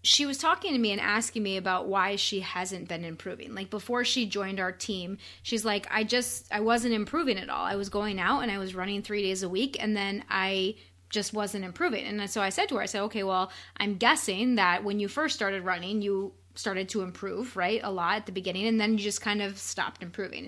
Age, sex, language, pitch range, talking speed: 20-39, female, English, 195-235 Hz, 245 wpm